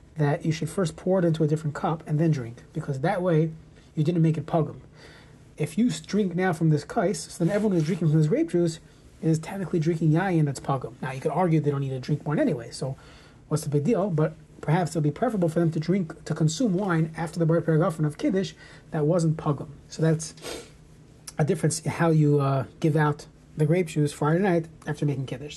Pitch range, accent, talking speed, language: 150-185 Hz, American, 230 wpm, English